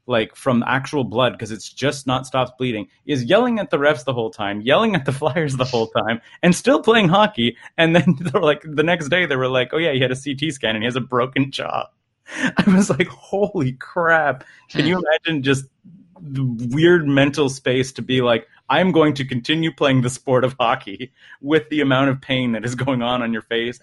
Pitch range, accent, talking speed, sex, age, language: 120-150 Hz, American, 225 wpm, male, 30-49, English